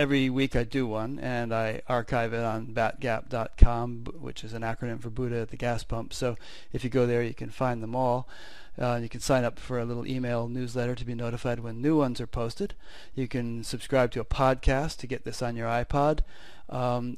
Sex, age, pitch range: male, 40-59, 120-140 Hz